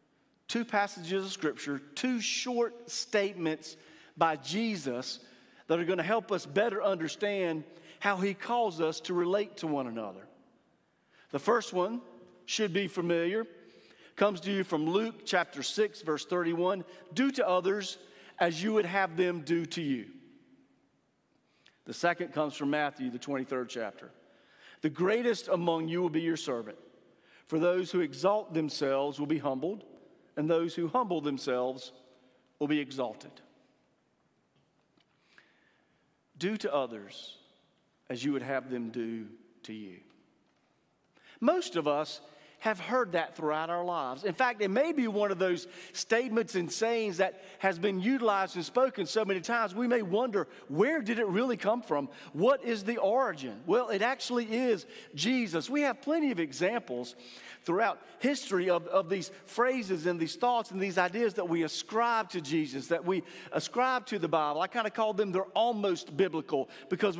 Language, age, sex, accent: English, 40-59, male, American